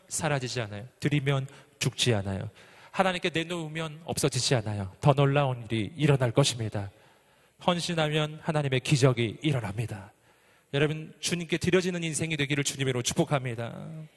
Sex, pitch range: male, 130-175 Hz